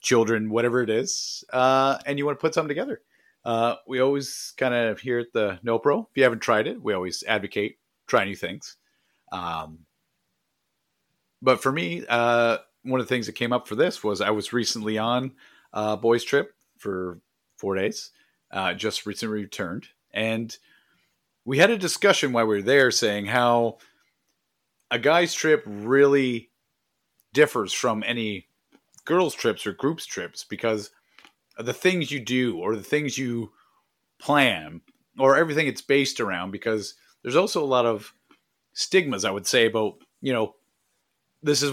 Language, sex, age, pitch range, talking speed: English, male, 40-59, 110-130 Hz, 165 wpm